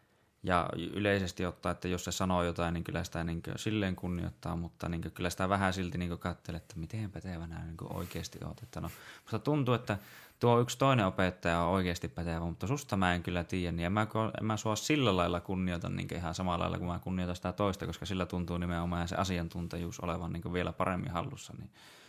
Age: 20-39